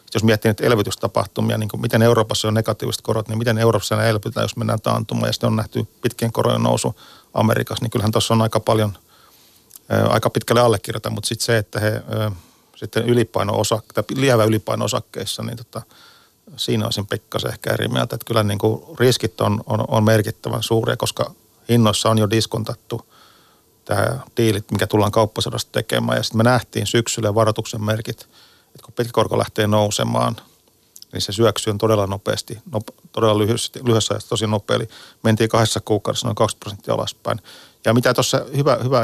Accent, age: native, 40-59